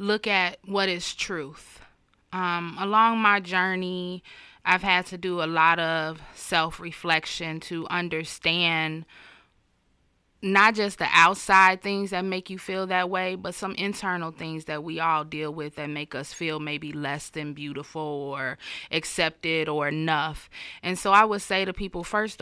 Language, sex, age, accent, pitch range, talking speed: English, female, 20-39, American, 160-190 Hz, 160 wpm